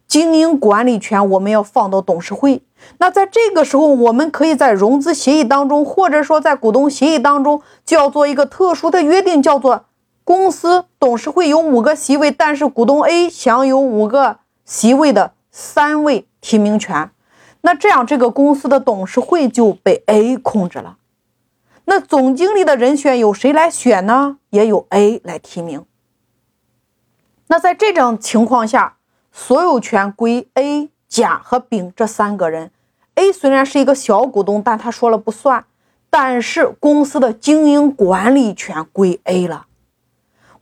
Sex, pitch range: female, 215-295 Hz